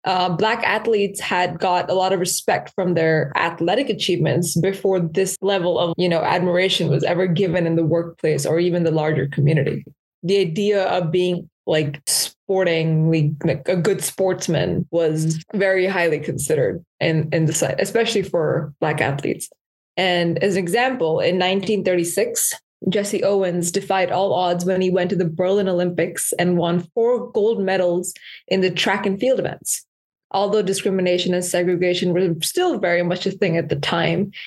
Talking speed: 165 wpm